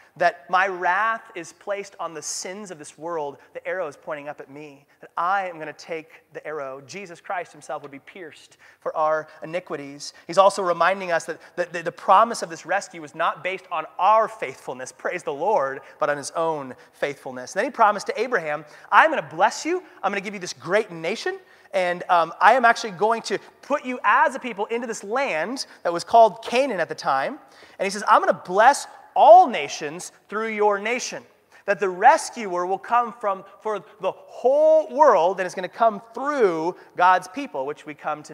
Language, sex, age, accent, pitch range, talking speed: English, male, 30-49, American, 165-230 Hz, 210 wpm